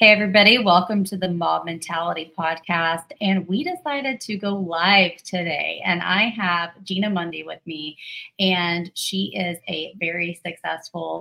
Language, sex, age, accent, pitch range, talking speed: English, female, 30-49, American, 165-200 Hz, 150 wpm